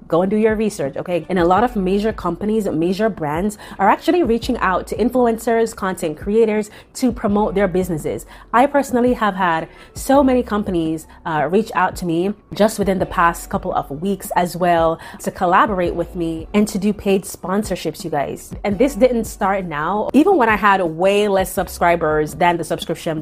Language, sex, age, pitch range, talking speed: English, female, 30-49, 170-215 Hz, 190 wpm